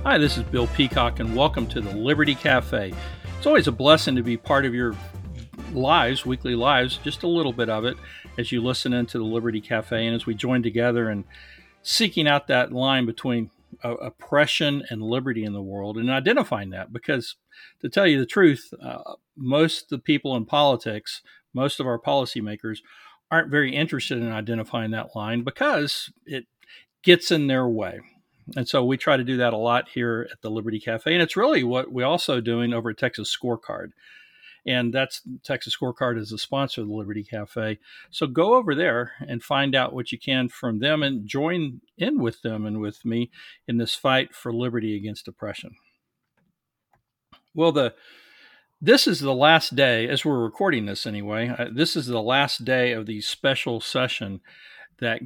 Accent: American